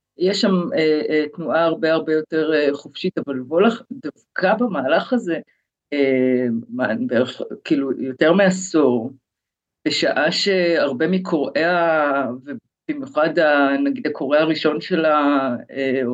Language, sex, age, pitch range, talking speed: Hebrew, female, 50-69, 140-195 Hz, 110 wpm